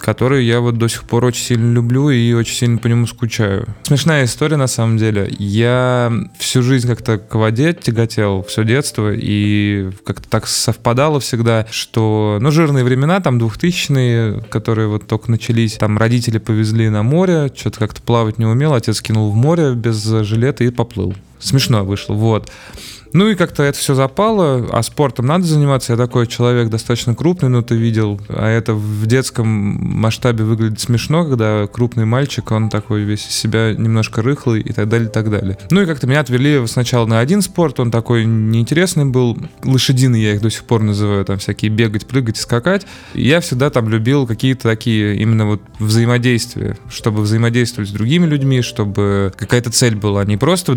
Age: 20-39